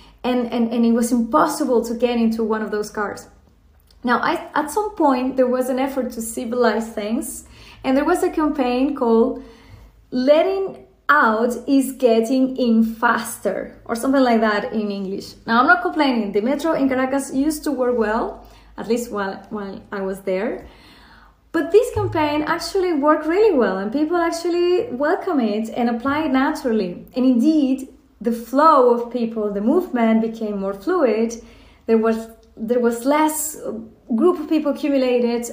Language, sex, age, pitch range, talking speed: English, female, 20-39, 225-280 Hz, 165 wpm